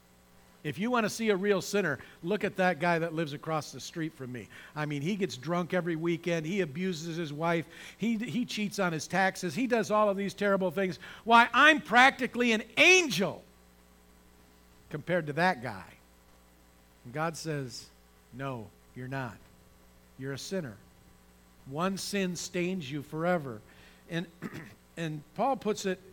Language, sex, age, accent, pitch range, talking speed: English, male, 50-69, American, 150-205 Hz, 165 wpm